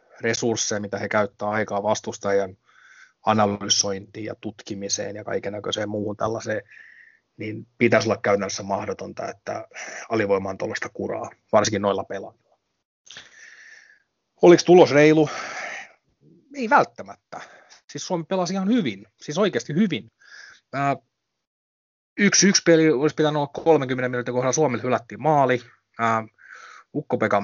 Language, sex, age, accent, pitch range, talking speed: Finnish, male, 30-49, native, 110-140 Hz, 110 wpm